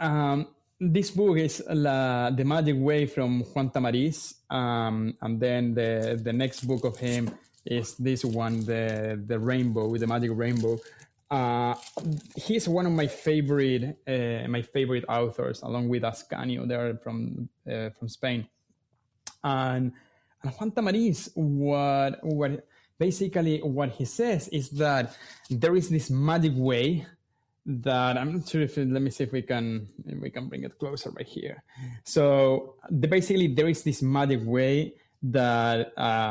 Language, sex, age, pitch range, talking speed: English, male, 20-39, 120-155 Hz, 155 wpm